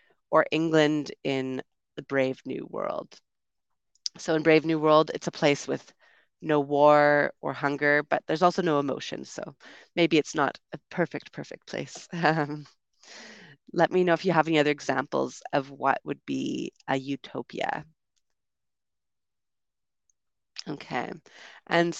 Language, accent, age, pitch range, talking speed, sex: English, American, 30-49, 140-165 Hz, 135 wpm, female